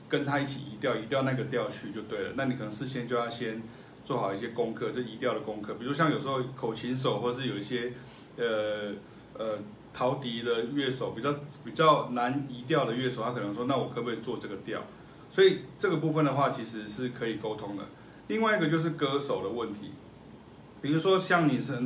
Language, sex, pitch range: Chinese, male, 120-145 Hz